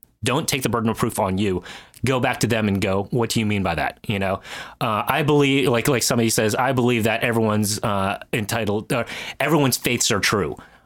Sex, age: male, 30-49